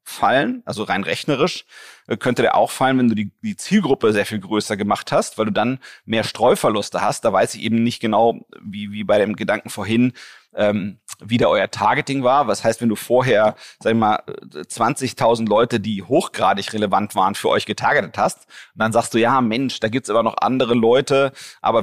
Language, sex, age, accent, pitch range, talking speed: German, male, 40-59, German, 110-130 Hz, 205 wpm